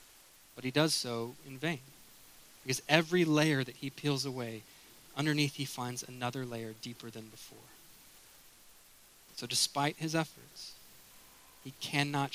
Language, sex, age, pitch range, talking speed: English, male, 20-39, 120-145 Hz, 130 wpm